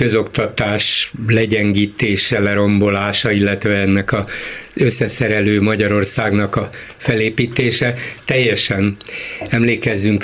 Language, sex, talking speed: Hungarian, male, 70 wpm